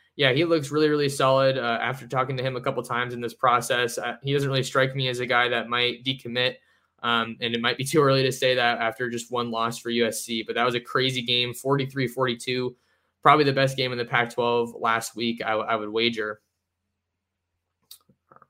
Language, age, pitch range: English, 20-39, 115-135 Hz